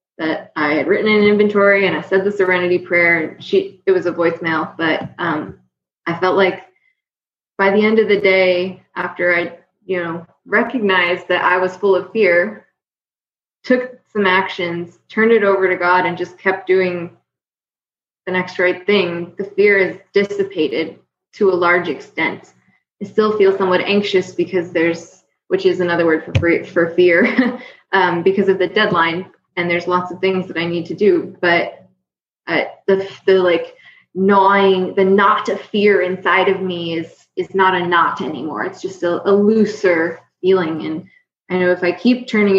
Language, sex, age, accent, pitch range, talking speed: English, female, 20-39, American, 175-205 Hz, 180 wpm